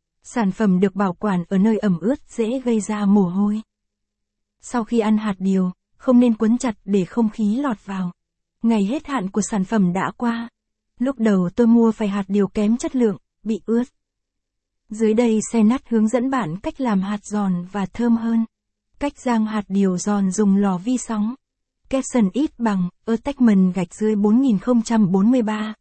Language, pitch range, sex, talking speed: Vietnamese, 195-235 Hz, female, 180 wpm